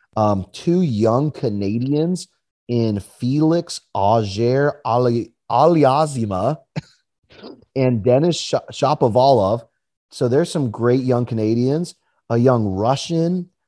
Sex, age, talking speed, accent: male, 30-49, 90 wpm, American